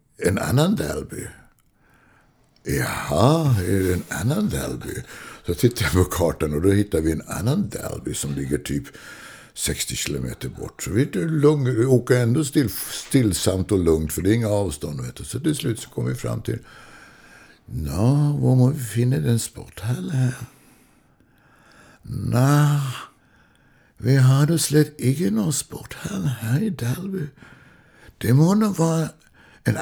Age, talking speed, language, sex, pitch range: 60-79, 145 wpm, Swedish, male, 105-150 Hz